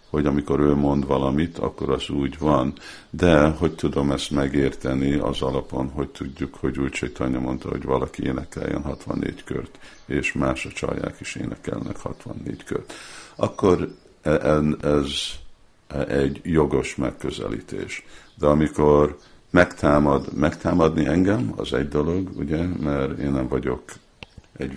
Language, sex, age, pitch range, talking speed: Hungarian, male, 50-69, 65-75 Hz, 130 wpm